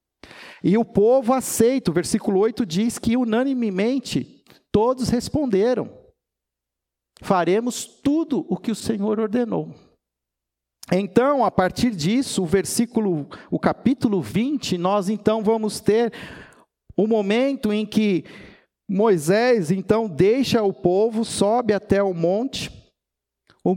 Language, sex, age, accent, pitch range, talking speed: Portuguese, male, 50-69, Brazilian, 175-220 Hz, 115 wpm